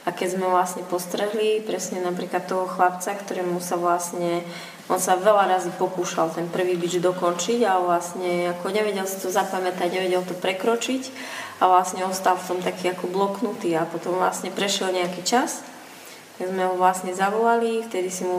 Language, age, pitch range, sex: Slovak, 20-39, 175-190 Hz, female